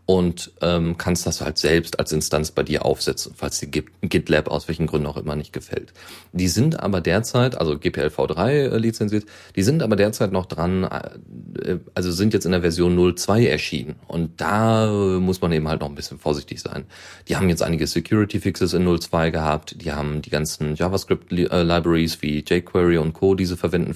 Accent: German